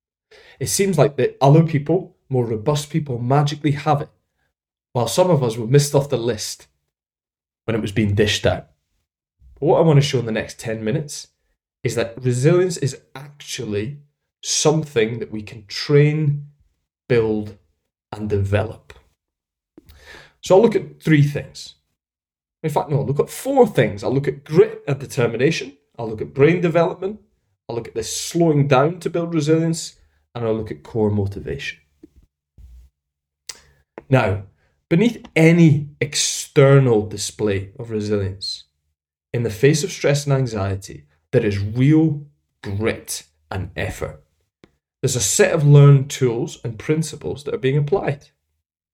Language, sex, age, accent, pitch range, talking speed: English, male, 20-39, British, 95-145 Hz, 150 wpm